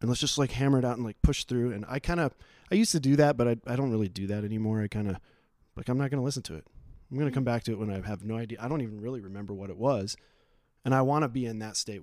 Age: 20-39